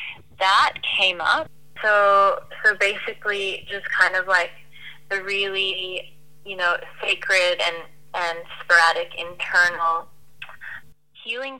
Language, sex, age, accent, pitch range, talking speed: English, female, 20-39, American, 170-205 Hz, 105 wpm